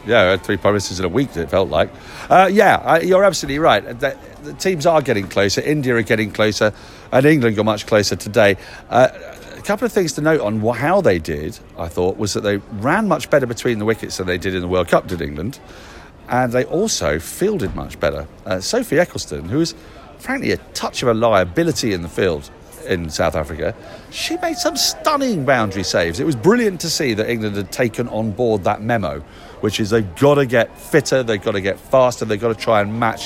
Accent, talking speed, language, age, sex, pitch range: British, 220 wpm, English, 40-59, male, 95-140 Hz